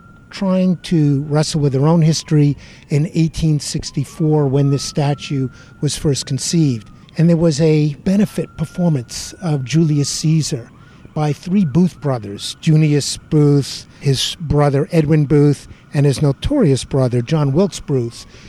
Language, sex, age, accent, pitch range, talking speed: English, male, 50-69, American, 135-165 Hz, 135 wpm